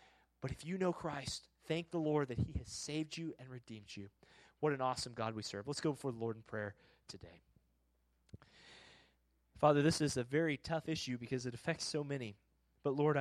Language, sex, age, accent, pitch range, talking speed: English, male, 30-49, American, 130-165 Hz, 200 wpm